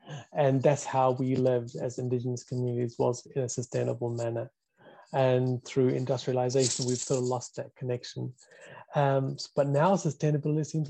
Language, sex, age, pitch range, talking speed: English, male, 30-49, 135-165 Hz, 150 wpm